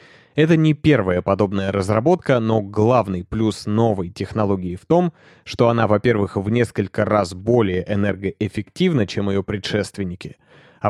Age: 20-39